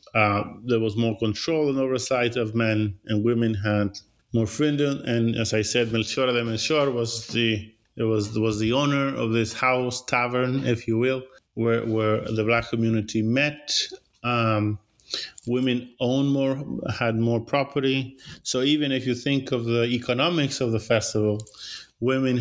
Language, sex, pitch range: English, male, 110-130 Hz